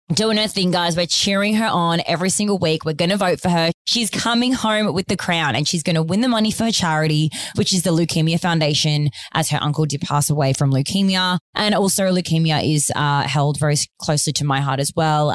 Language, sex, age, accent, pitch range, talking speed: English, female, 20-39, Australian, 145-185 Hz, 230 wpm